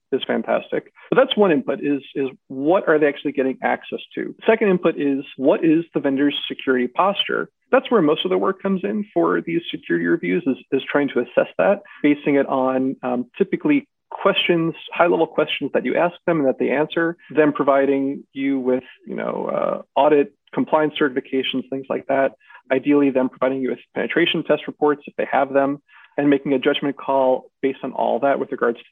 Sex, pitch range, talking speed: male, 135-170 Hz, 195 wpm